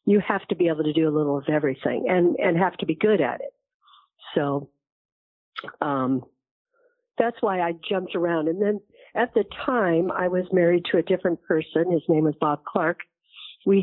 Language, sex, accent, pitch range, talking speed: English, female, American, 155-195 Hz, 190 wpm